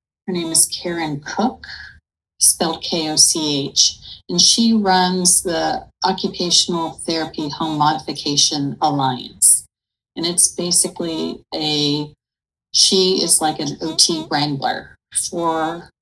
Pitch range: 145-185 Hz